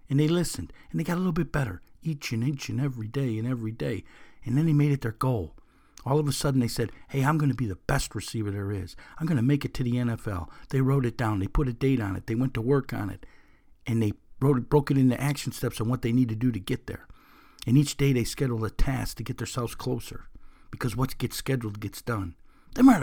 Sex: male